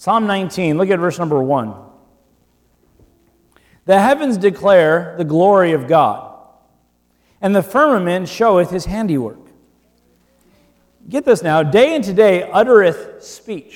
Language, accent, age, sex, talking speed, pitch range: English, American, 40-59, male, 120 wpm, 130-200 Hz